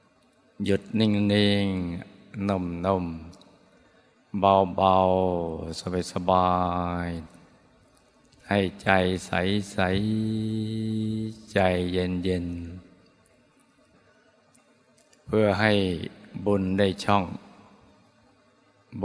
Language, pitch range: Thai, 90-100 Hz